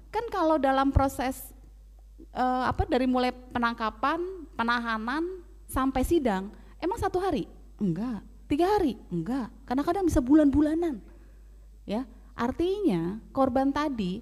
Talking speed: 120 wpm